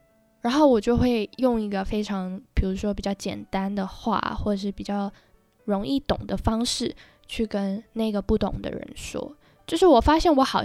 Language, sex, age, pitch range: Chinese, female, 10-29, 195-235 Hz